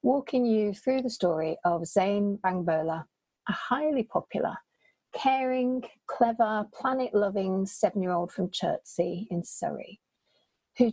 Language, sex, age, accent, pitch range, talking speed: English, female, 40-59, British, 185-225 Hz, 110 wpm